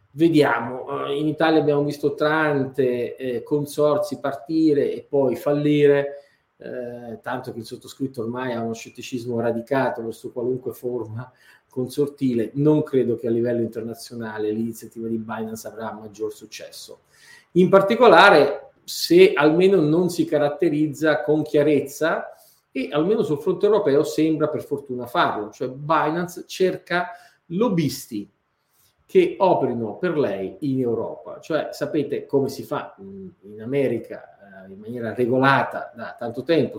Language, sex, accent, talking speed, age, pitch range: Italian, male, native, 130 wpm, 40-59, 120-160 Hz